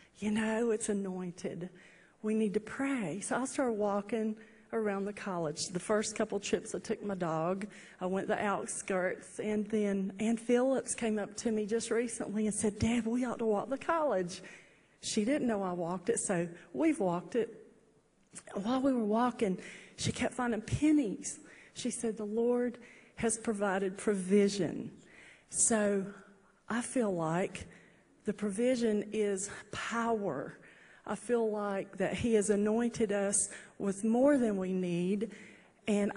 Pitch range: 195-230 Hz